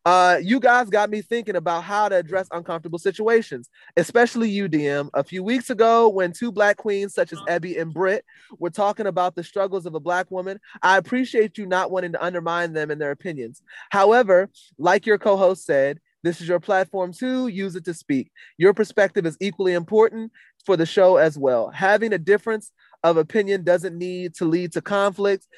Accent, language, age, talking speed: American, English, 20-39, 195 wpm